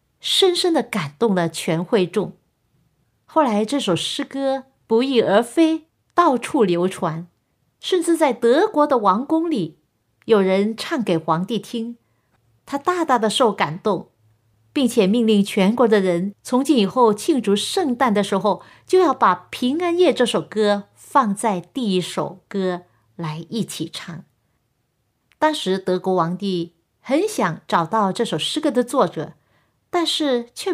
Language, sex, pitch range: Chinese, female, 185-280 Hz